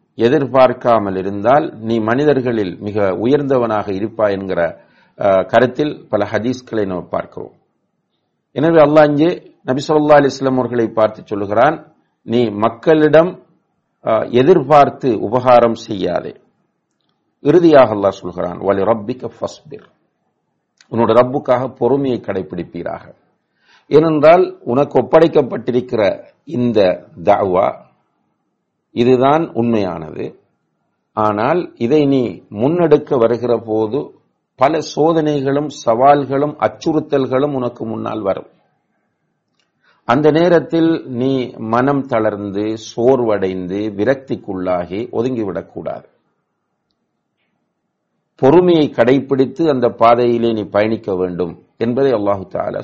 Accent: Indian